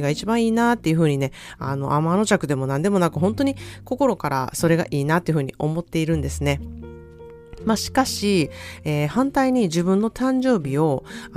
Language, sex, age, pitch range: Japanese, female, 30-49, 145-205 Hz